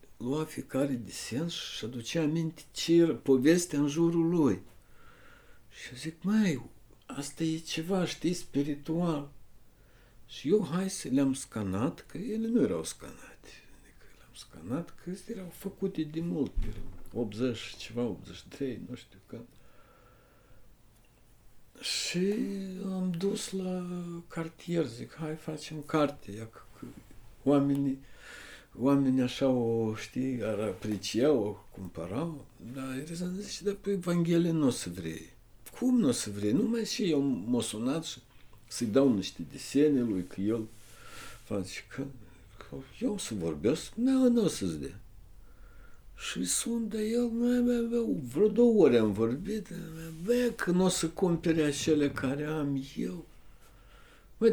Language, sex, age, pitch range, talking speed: Romanian, male, 60-79, 130-190 Hz, 130 wpm